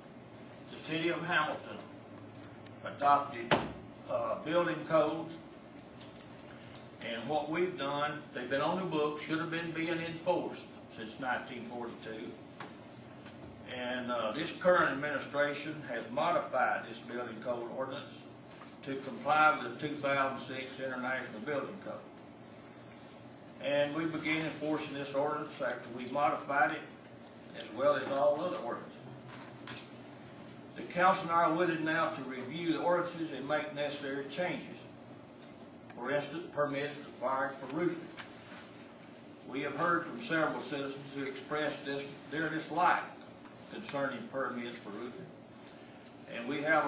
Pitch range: 130-160 Hz